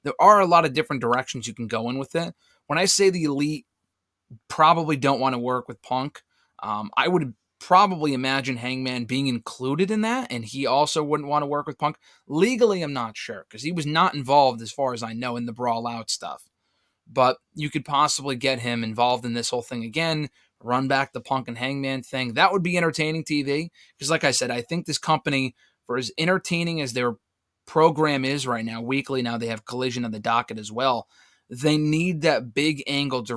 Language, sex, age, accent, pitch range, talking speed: English, male, 20-39, American, 120-155 Hz, 215 wpm